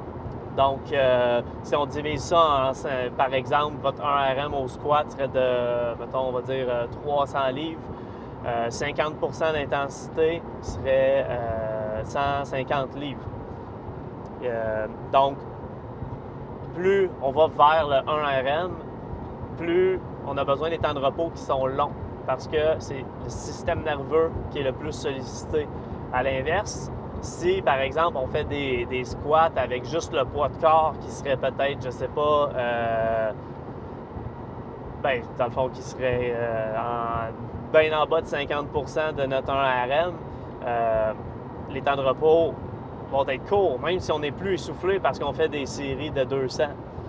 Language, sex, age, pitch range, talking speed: French, male, 30-49, 120-150 Hz, 150 wpm